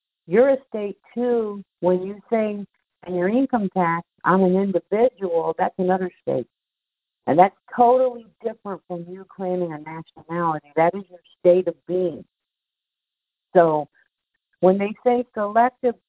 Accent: American